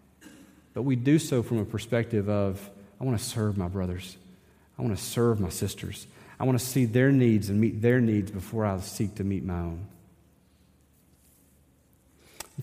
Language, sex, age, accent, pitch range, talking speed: English, male, 40-59, American, 90-135 Hz, 180 wpm